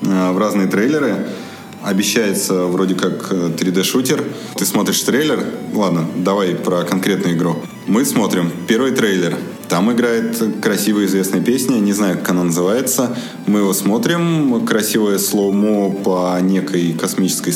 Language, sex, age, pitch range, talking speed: Russian, male, 20-39, 90-110 Hz, 125 wpm